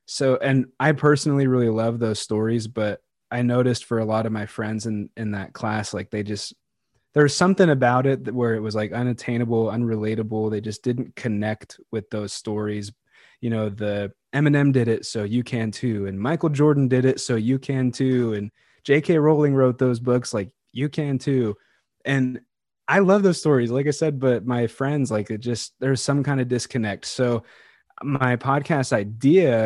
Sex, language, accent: male, English, American